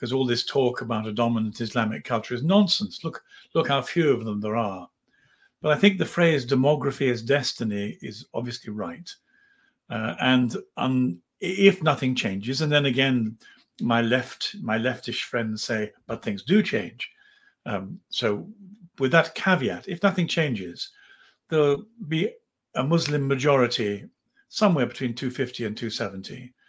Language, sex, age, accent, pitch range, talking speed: English, male, 60-79, British, 110-160 Hz, 155 wpm